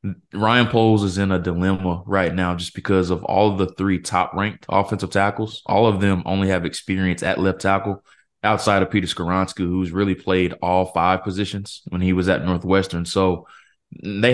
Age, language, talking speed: 20-39, English, 190 wpm